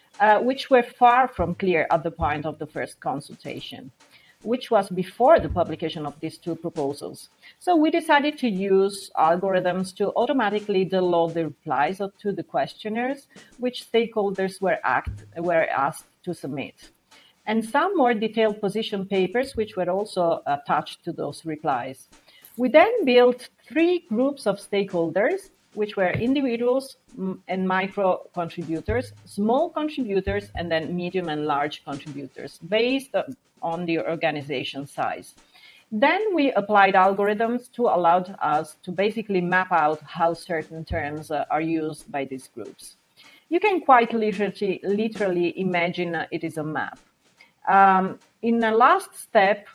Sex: female